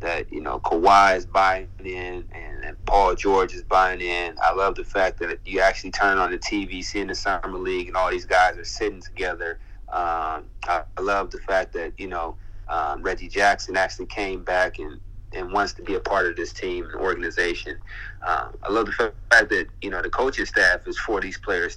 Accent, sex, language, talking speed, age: American, male, English, 220 wpm, 30-49